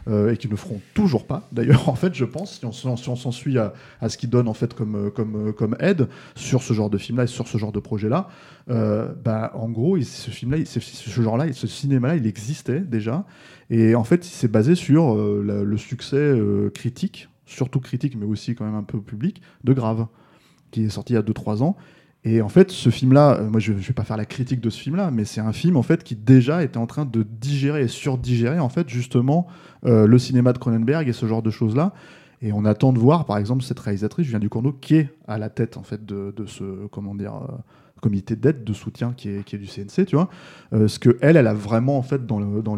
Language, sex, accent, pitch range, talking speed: French, male, French, 110-140 Hz, 245 wpm